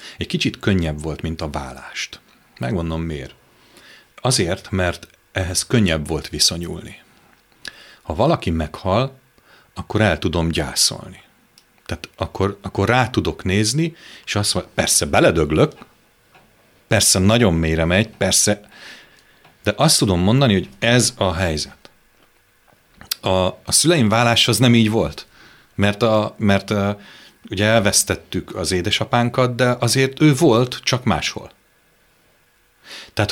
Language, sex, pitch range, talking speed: Hungarian, male, 90-115 Hz, 125 wpm